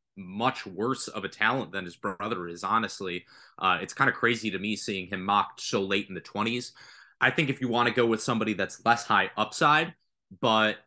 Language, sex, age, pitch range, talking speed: English, male, 20-39, 105-135 Hz, 215 wpm